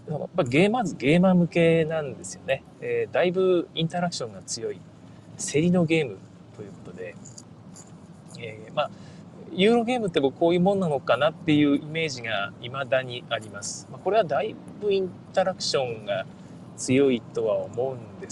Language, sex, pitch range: Japanese, male, 145-210 Hz